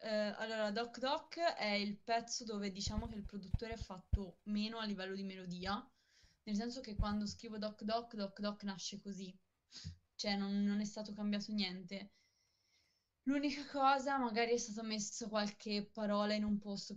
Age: 20-39